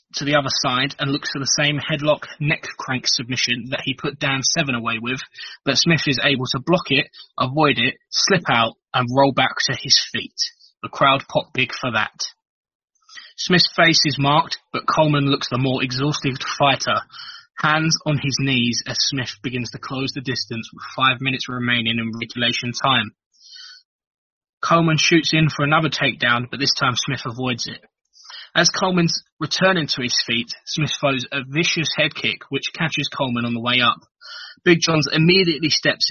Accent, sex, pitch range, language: British, male, 125-155 Hz, English